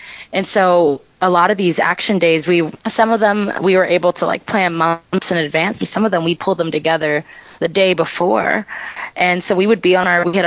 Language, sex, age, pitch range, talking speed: English, female, 20-39, 160-195 Hz, 235 wpm